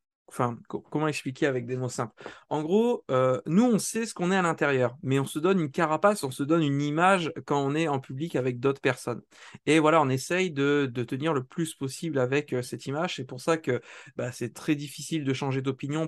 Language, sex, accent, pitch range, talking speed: French, male, French, 135-175 Hz, 230 wpm